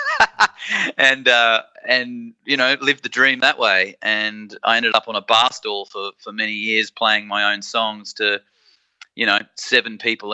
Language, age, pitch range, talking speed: English, 30-49, 100-120 Hz, 180 wpm